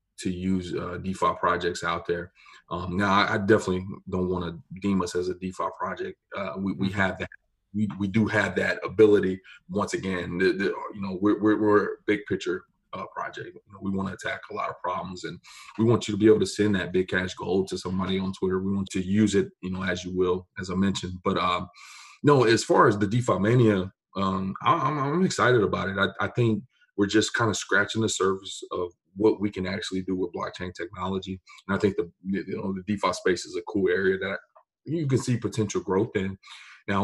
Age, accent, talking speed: 30-49, American, 220 wpm